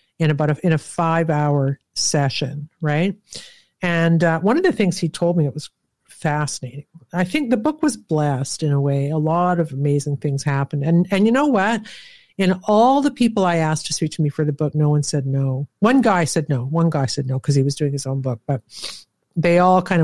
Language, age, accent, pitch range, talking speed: English, 50-69, American, 145-185 Hz, 230 wpm